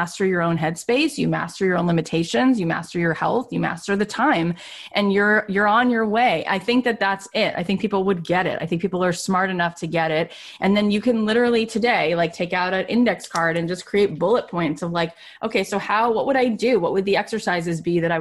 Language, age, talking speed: English, 30-49, 250 wpm